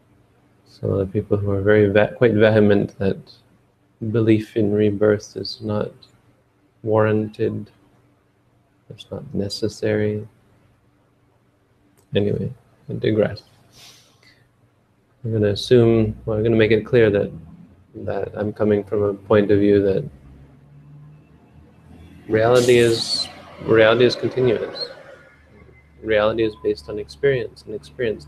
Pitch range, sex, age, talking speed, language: 100-115 Hz, male, 30-49, 115 wpm, English